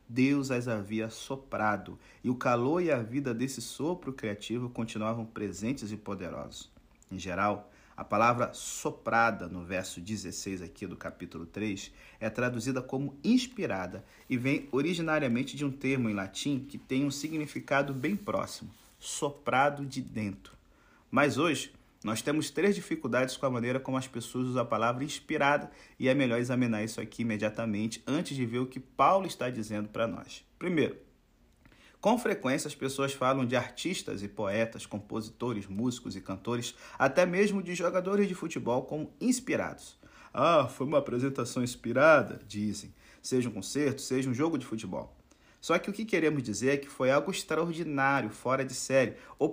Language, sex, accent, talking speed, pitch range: Portuguese, male, Brazilian, 160 wpm, 110-140 Hz